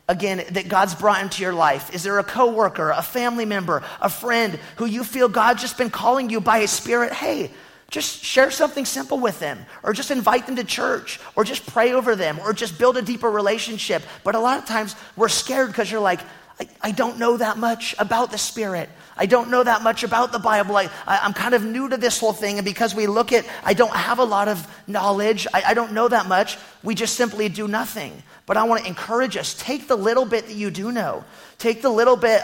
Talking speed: 235 wpm